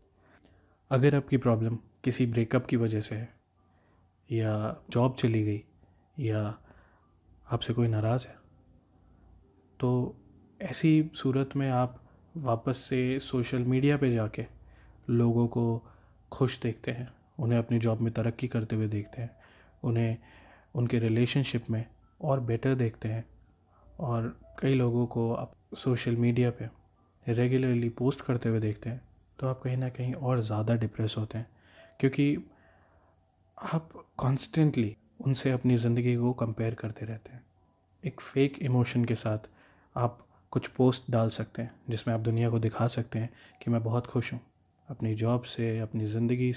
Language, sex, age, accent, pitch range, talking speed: Hindi, male, 30-49, native, 105-125 Hz, 145 wpm